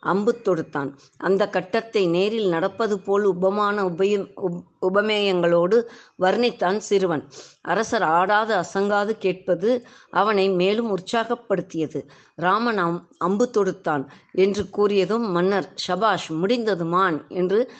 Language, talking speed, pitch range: Tamil, 90 wpm, 175-215 Hz